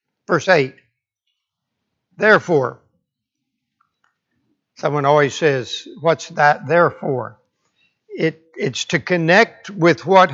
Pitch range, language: 145-190 Hz, English